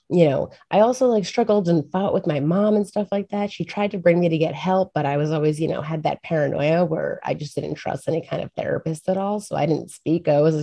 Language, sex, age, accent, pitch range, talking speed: English, female, 30-49, American, 150-170 Hz, 275 wpm